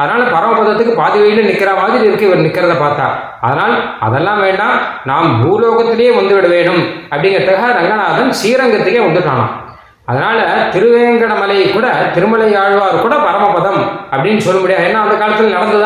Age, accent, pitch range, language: 30-49, native, 165-220 Hz, Tamil